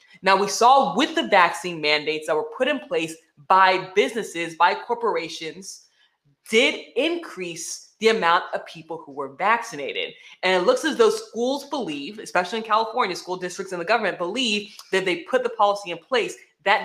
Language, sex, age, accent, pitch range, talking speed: English, female, 20-39, American, 180-280 Hz, 175 wpm